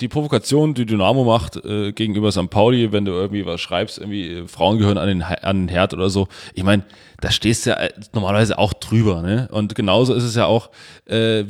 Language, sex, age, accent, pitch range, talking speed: German, male, 20-39, German, 95-110 Hz, 230 wpm